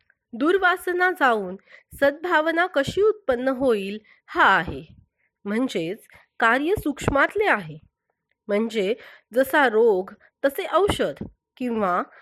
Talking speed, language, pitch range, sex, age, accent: 90 wpm, Marathi, 205-310 Hz, female, 30-49, native